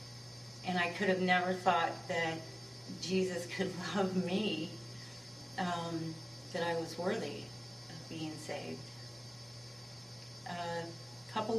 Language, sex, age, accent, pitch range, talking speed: English, female, 40-59, American, 120-180 Hz, 110 wpm